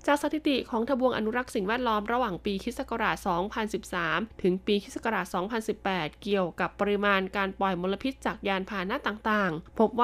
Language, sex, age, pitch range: Thai, female, 20-39, 195-235 Hz